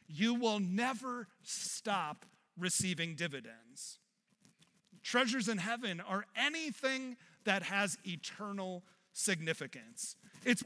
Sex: male